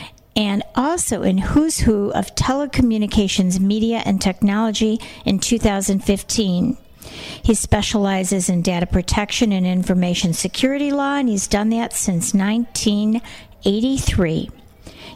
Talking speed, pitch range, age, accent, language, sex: 105 wpm, 195-235 Hz, 50-69, American, English, female